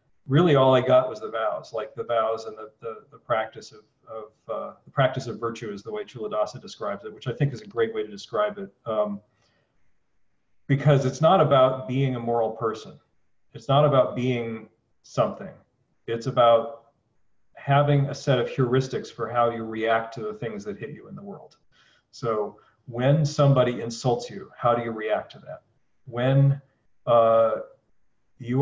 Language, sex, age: English, male, 40-59